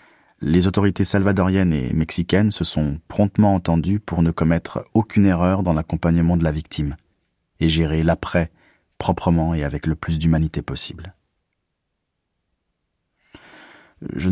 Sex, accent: male, French